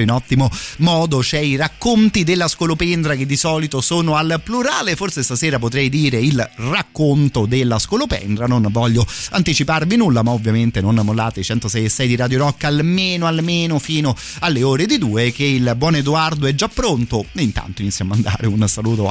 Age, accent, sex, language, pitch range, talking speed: 30-49, native, male, Italian, 115-155 Hz, 180 wpm